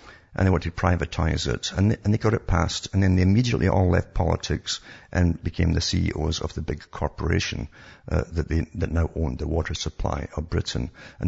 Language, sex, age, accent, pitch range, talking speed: English, male, 50-69, British, 85-100 Hz, 215 wpm